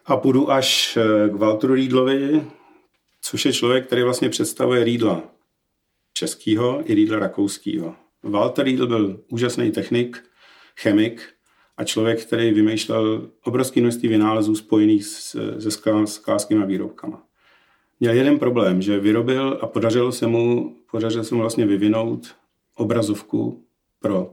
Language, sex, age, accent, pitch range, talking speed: Czech, male, 40-59, native, 105-120 Hz, 125 wpm